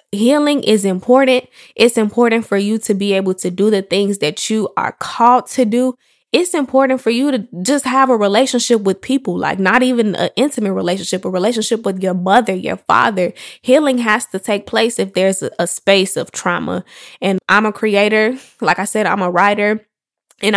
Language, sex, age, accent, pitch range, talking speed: English, female, 20-39, American, 195-245 Hz, 195 wpm